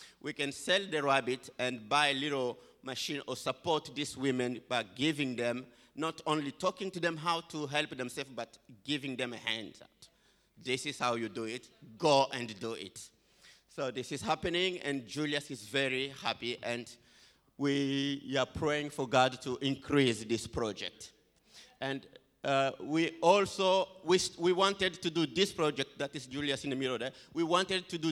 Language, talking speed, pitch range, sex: English, 175 wpm, 125-150 Hz, male